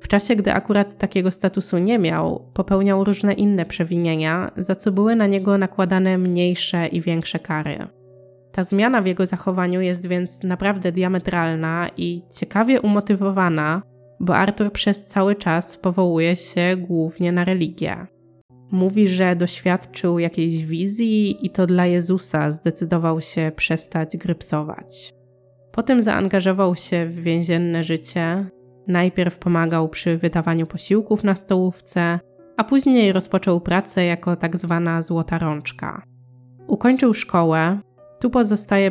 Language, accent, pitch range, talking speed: Polish, native, 165-195 Hz, 125 wpm